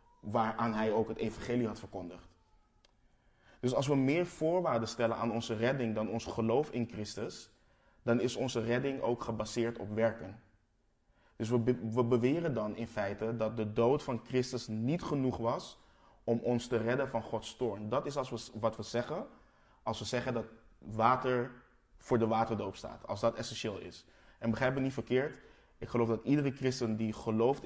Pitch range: 110-125 Hz